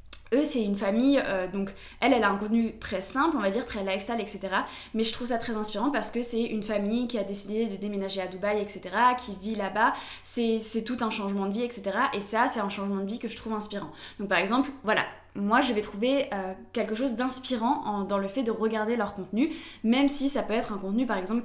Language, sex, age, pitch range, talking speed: French, female, 20-39, 200-240 Hz, 245 wpm